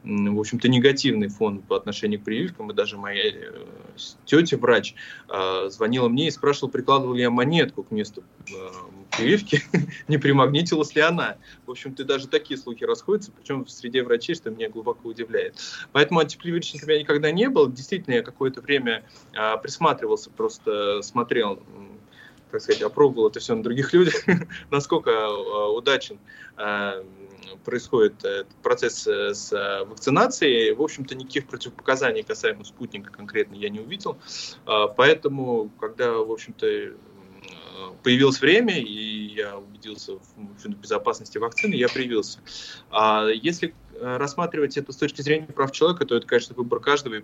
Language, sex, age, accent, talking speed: Russian, male, 20-39, native, 135 wpm